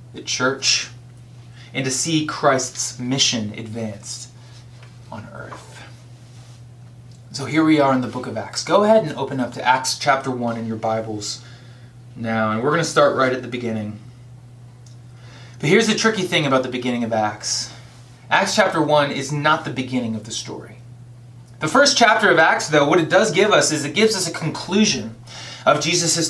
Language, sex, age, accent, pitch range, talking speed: English, male, 20-39, American, 120-170 Hz, 185 wpm